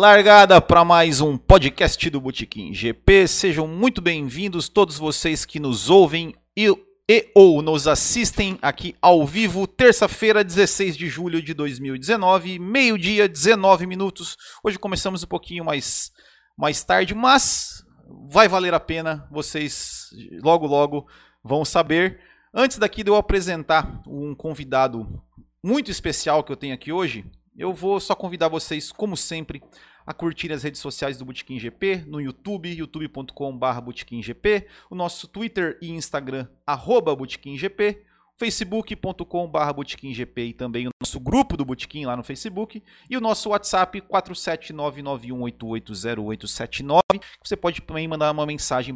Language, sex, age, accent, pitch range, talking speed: Portuguese, male, 40-59, Brazilian, 140-195 Hz, 140 wpm